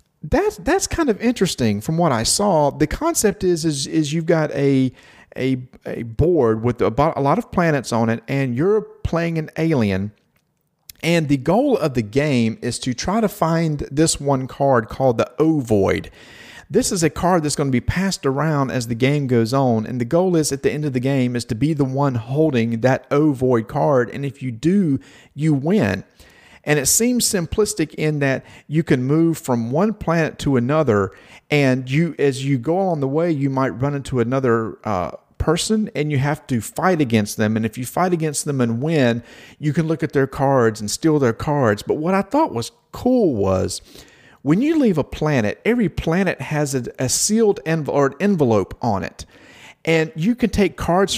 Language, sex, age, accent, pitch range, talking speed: English, male, 40-59, American, 125-165 Hz, 200 wpm